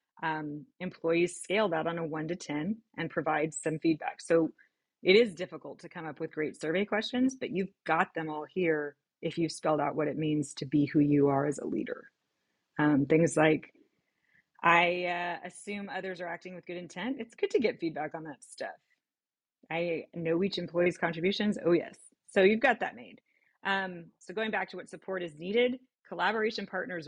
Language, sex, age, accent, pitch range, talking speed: English, female, 30-49, American, 155-190 Hz, 195 wpm